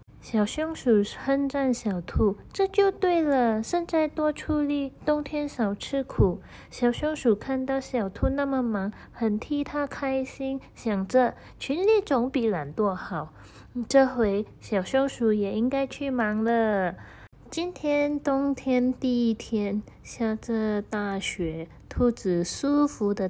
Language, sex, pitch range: Chinese, female, 190-265 Hz